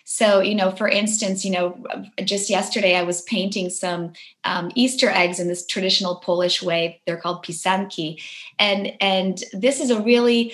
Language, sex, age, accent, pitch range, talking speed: English, female, 20-39, American, 180-230 Hz, 170 wpm